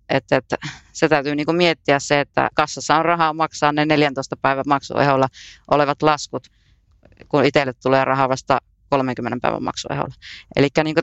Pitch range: 130-160 Hz